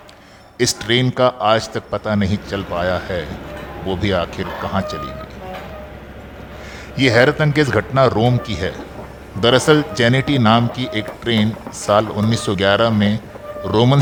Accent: native